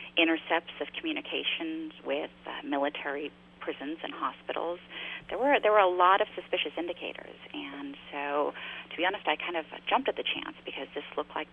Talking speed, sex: 175 wpm, female